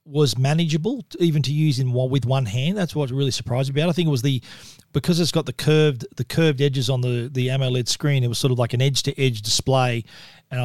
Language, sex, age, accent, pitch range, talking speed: English, male, 40-59, Australian, 130-155 Hz, 265 wpm